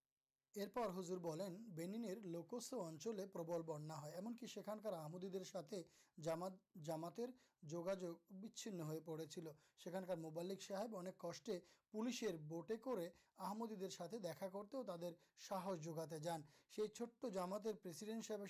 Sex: male